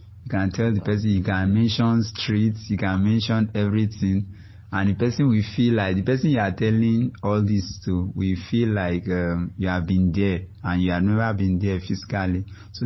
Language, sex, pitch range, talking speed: English, male, 95-105 Hz, 200 wpm